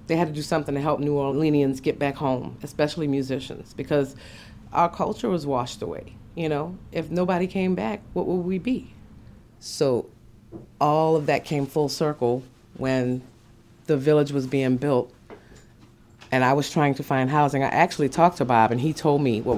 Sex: female